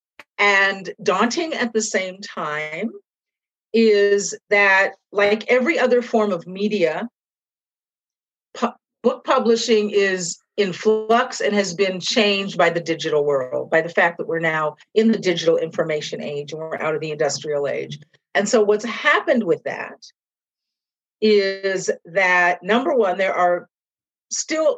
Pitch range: 185-235 Hz